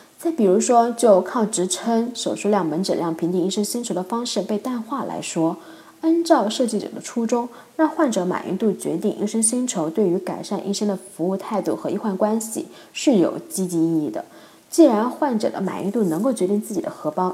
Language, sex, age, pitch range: Chinese, female, 20-39, 185-255 Hz